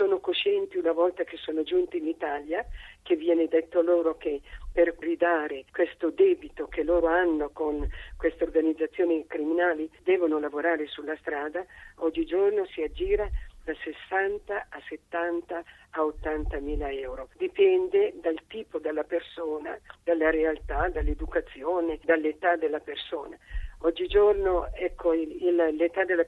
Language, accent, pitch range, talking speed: Italian, native, 155-205 Hz, 130 wpm